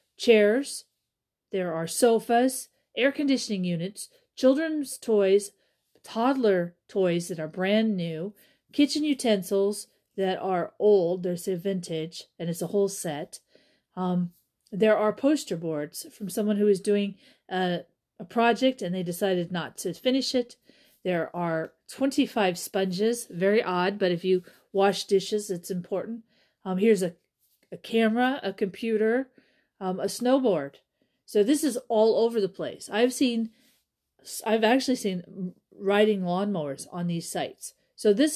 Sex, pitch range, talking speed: female, 180-230 Hz, 140 wpm